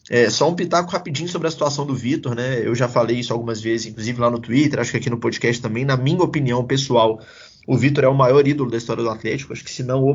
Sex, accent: male, Brazilian